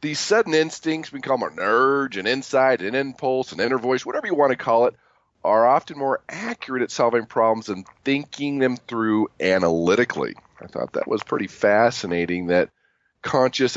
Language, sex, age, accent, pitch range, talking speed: English, male, 40-59, American, 105-130 Hz, 180 wpm